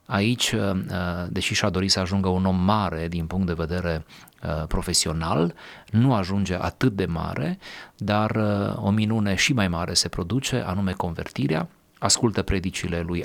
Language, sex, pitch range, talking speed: Romanian, male, 85-105 Hz, 145 wpm